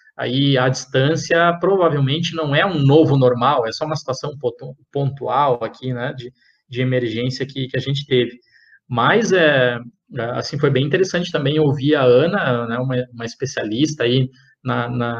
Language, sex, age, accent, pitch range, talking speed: Portuguese, male, 20-39, Brazilian, 130-175 Hz, 160 wpm